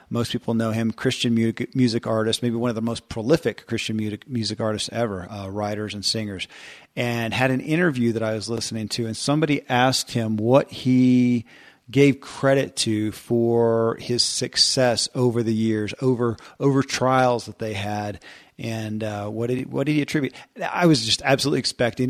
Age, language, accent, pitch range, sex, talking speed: 40-59, English, American, 110-125 Hz, male, 180 wpm